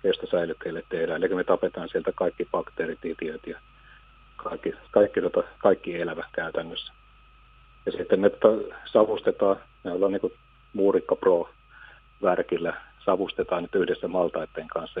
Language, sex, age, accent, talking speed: Finnish, male, 50-69, native, 115 wpm